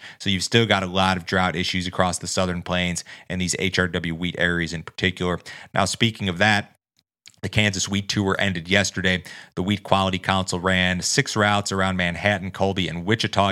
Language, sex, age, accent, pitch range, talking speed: English, male, 30-49, American, 90-100 Hz, 185 wpm